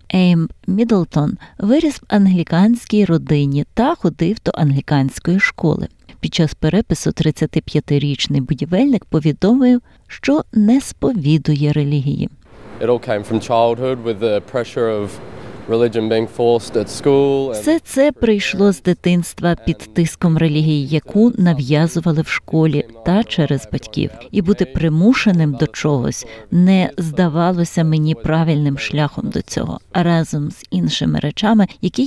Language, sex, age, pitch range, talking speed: Ukrainian, female, 20-39, 150-200 Hz, 100 wpm